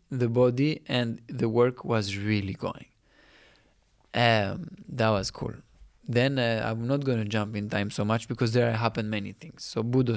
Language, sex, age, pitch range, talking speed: English, male, 20-39, 110-130 Hz, 175 wpm